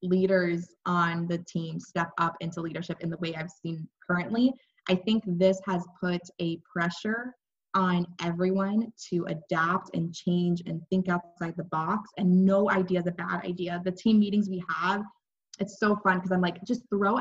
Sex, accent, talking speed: female, American, 180 wpm